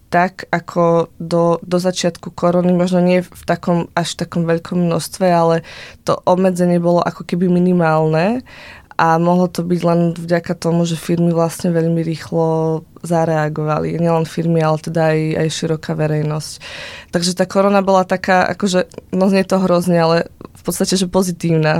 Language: Slovak